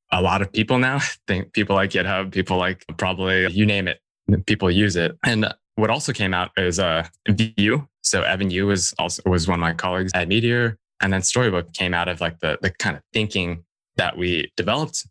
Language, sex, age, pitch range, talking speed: English, male, 20-39, 95-115 Hz, 215 wpm